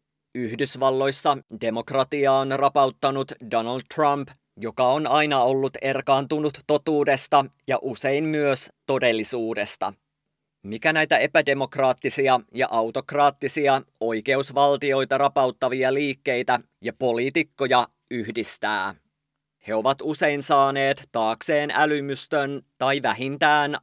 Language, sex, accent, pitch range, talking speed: English, male, Finnish, 130-145 Hz, 85 wpm